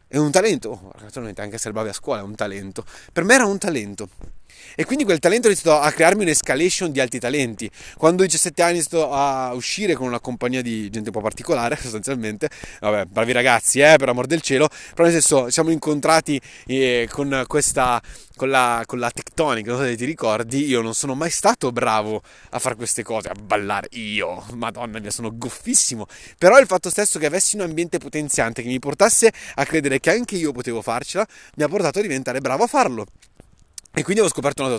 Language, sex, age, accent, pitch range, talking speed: Italian, male, 20-39, native, 120-180 Hz, 210 wpm